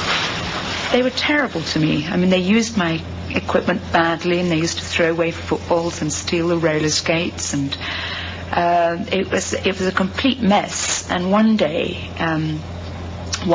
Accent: British